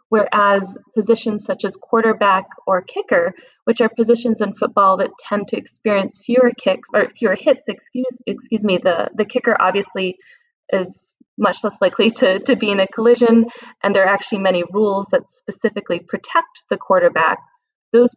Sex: female